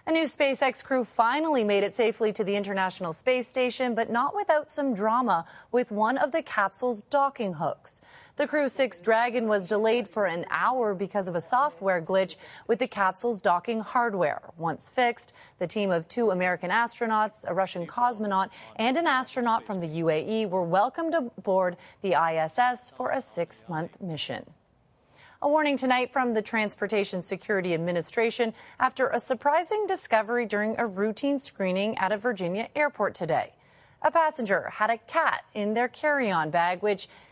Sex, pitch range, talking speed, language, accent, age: female, 190-250 Hz, 160 wpm, English, American, 30-49